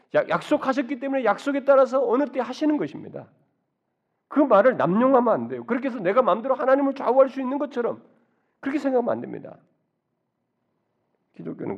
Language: Korean